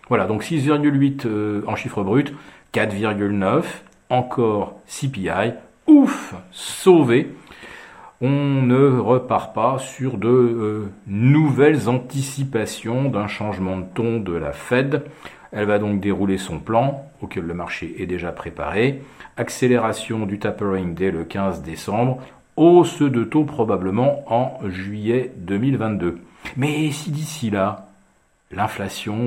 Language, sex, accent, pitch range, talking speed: French, male, French, 100-140 Hz, 120 wpm